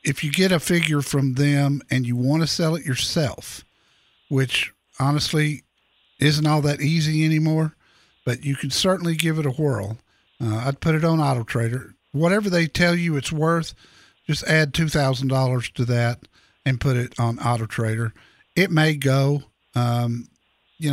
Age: 50-69